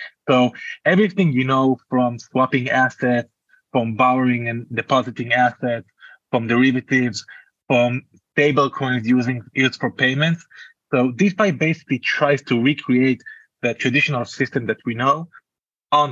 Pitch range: 120-145 Hz